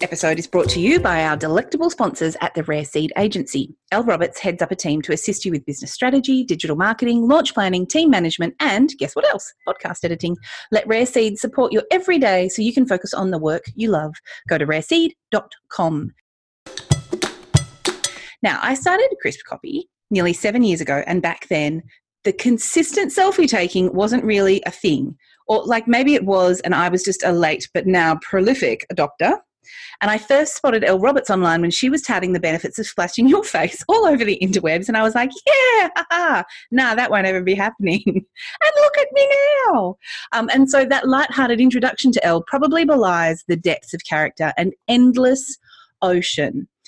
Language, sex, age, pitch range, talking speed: English, female, 30-49, 175-275 Hz, 190 wpm